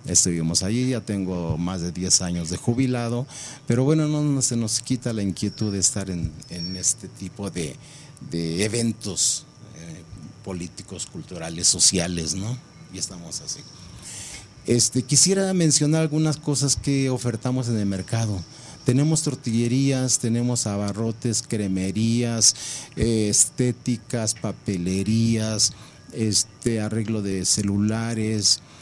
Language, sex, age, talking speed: Spanish, male, 40-59, 120 wpm